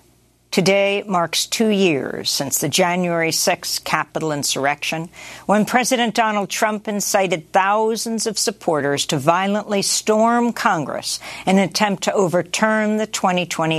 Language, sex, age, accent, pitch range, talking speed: English, female, 60-79, American, 175-225 Hz, 125 wpm